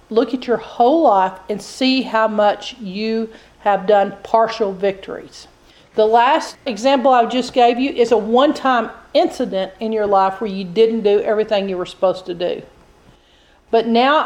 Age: 40-59